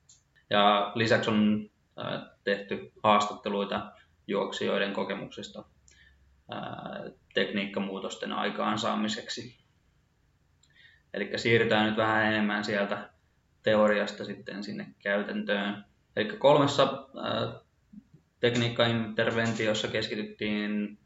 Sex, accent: male, native